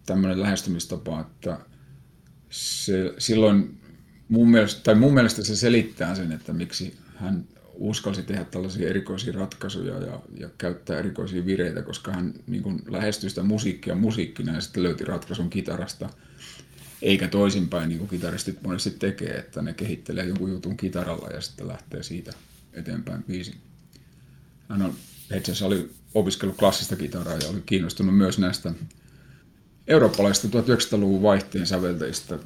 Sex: male